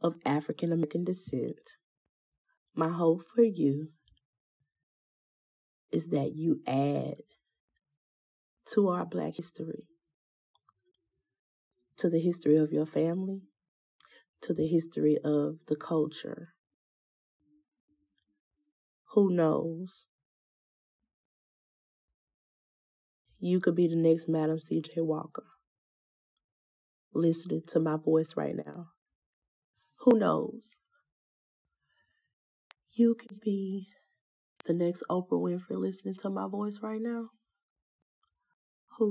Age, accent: 30-49, American